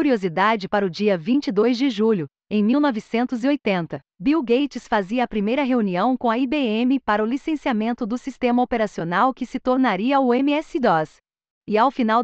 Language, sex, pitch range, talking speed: Portuguese, female, 210-265 Hz, 155 wpm